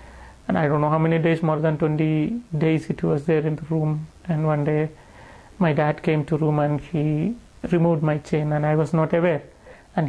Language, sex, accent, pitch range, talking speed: English, male, Indian, 155-180 Hz, 215 wpm